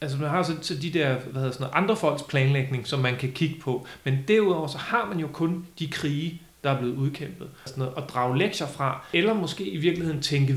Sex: male